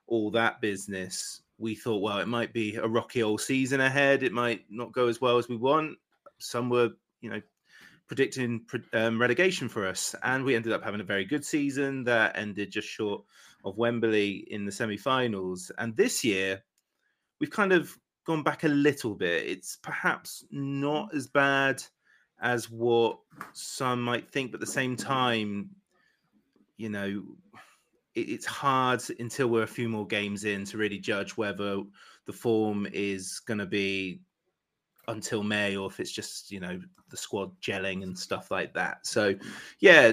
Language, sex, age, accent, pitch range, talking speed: English, male, 30-49, British, 105-130 Hz, 170 wpm